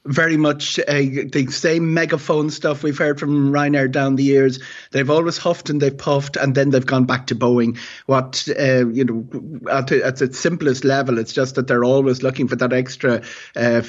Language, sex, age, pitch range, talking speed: English, male, 30-49, 125-140 Hz, 195 wpm